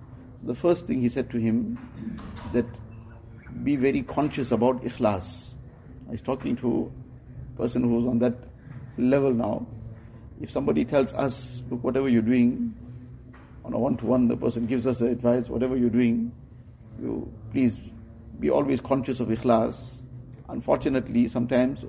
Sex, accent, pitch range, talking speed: male, Indian, 115-125 Hz, 145 wpm